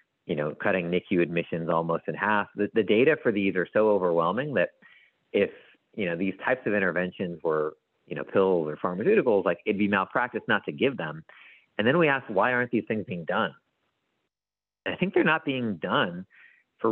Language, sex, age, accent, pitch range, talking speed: English, male, 40-59, American, 90-120 Hz, 200 wpm